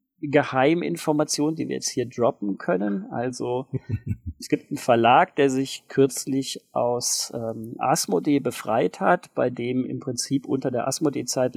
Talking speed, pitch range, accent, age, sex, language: 145 wpm, 125-145 Hz, German, 40-59, male, German